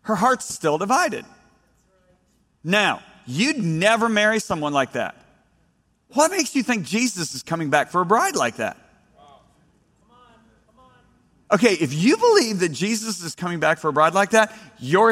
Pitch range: 180-235 Hz